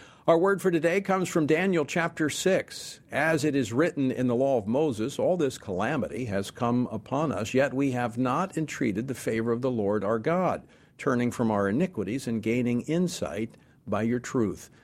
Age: 50-69